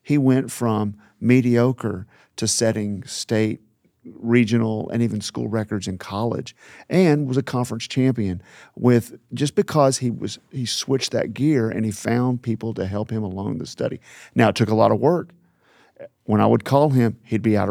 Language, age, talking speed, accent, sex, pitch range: English, 50-69, 180 wpm, American, male, 105-130 Hz